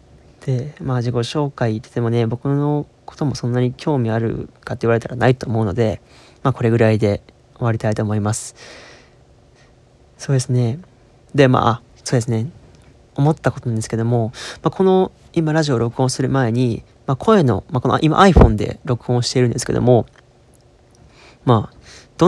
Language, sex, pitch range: Japanese, male, 115-150 Hz